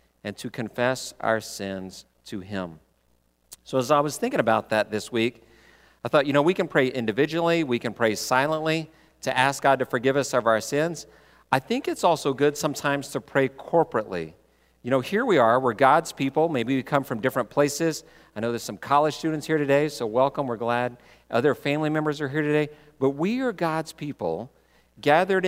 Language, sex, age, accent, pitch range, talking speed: English, male, 50-69, American, 110-150 Hz, 200 wpm